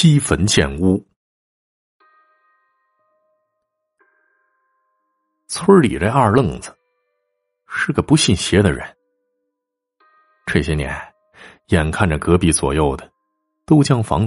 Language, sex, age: Chinese, male, 50-69